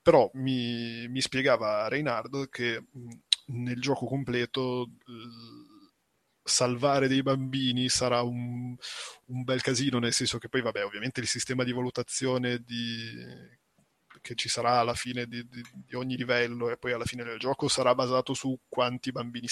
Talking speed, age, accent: 150 wpm, 20-39, native